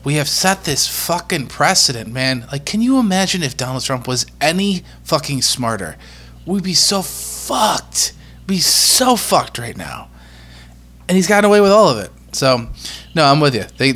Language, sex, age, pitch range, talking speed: English, male, 20-39, 115-150 Hz, 180 wpm